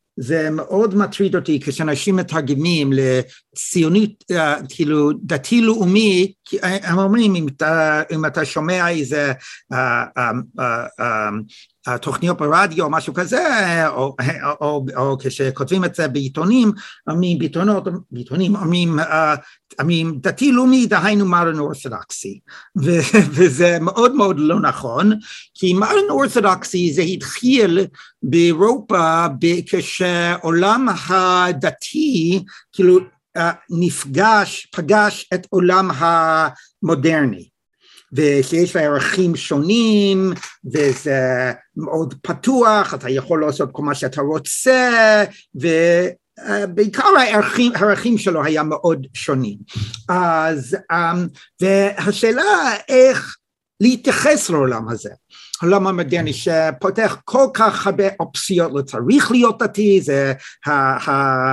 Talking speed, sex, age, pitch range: 100 wpm, male, 60-79, 150-200 Hz